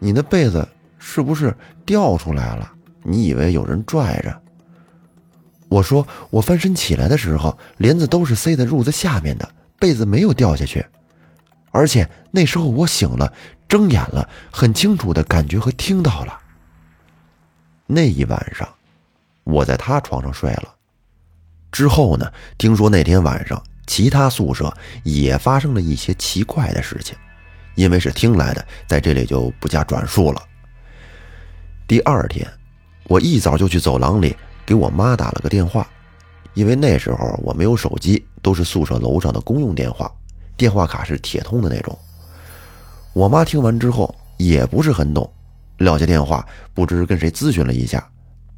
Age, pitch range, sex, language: 30-49, 80-125 Hz, male, Chinese